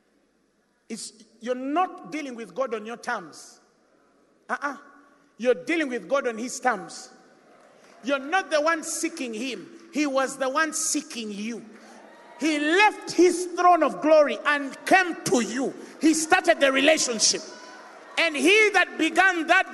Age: 50-69